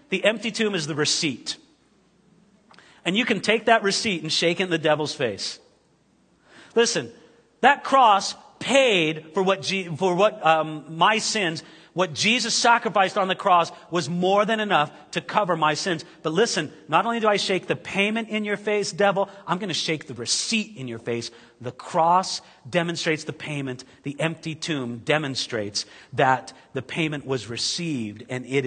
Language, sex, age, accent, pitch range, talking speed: English, male, 40-59, American, 155-215 Hz, 175 wpm